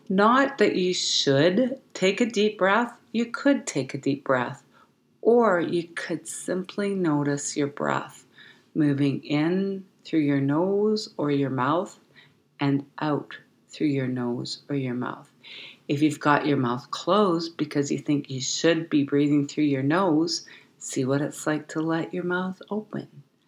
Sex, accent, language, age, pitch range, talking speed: female, American, English, 40-59, 140-185 Hz, 160 wpm